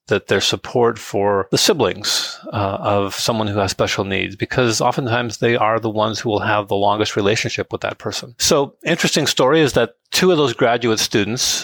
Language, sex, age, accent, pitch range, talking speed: English, male, 40-59, American, 105-130 Hz, 195 wpm